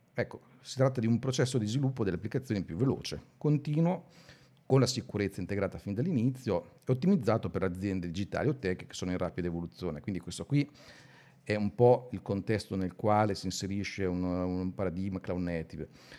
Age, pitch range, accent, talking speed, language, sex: 50-69, 90-125 Hz, native, 180 wpm, Italian, male